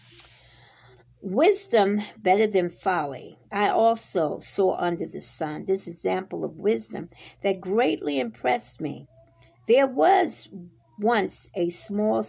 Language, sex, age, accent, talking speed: English, female, 50-69, American, 110 wpm